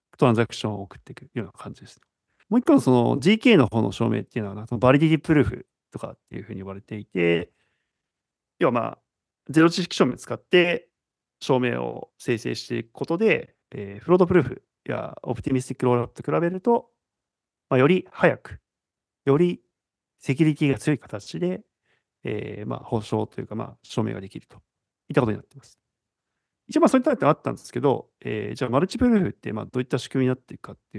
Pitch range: 115-155 Hz